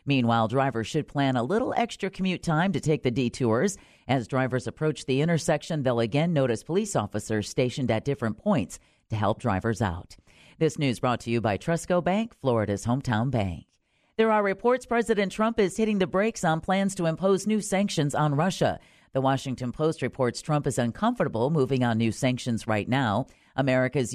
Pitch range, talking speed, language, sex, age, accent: 115-155 Hz, 180 wpm, English, female, 40-59, American